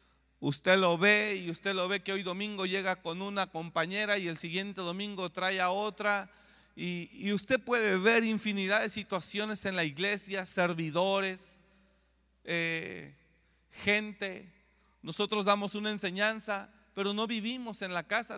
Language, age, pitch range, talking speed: Spanish, 40-59, 165-205 Hz, 145 wpm